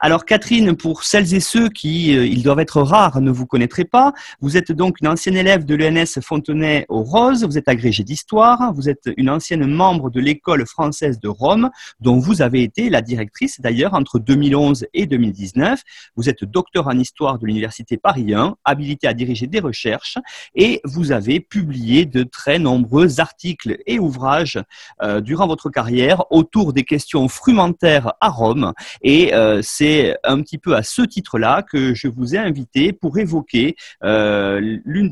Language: French